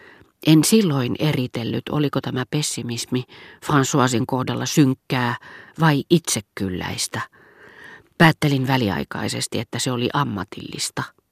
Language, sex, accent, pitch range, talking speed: Finnish, female, native, 120-140 Hz, 90 wpm